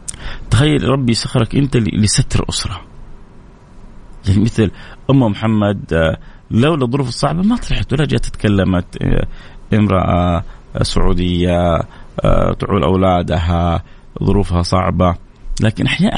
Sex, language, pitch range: male, Arabic, 100-140 Hz